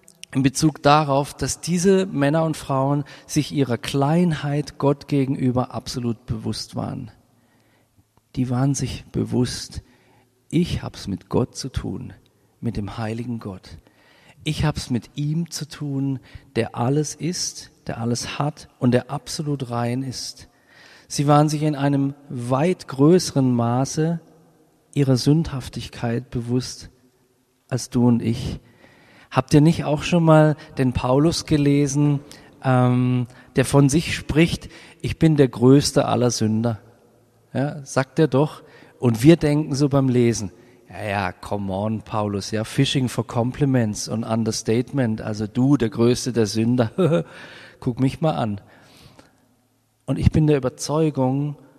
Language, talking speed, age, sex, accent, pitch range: German, 135 wpm, 40-59, male, German, 120-145 Hz